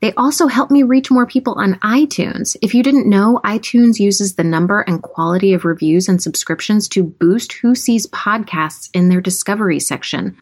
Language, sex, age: English, female, 30-49